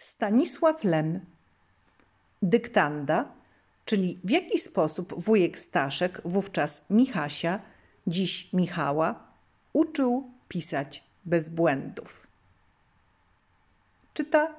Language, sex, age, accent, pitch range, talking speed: Polish, female, 50-69, native, 155-195 Hz, 75 wpm